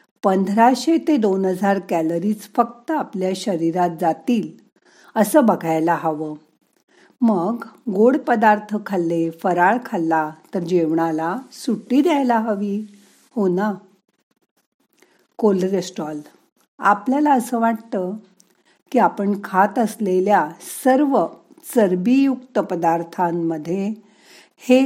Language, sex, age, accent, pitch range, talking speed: Marathi, female, 50-69, native, 180-235 Hz, 90 wpm